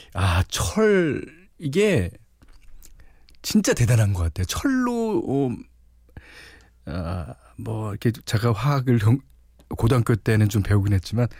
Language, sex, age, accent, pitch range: Korean, male, 40-59, native, 90-140 Hz